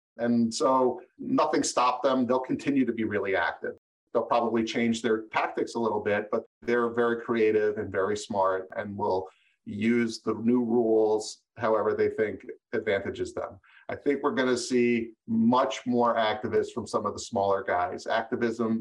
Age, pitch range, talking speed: 40-59, 115-130 Hz, 170 wpm